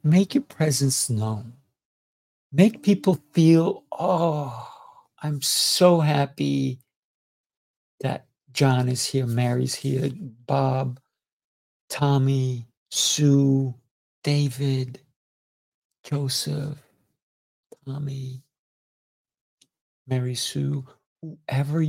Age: 60-79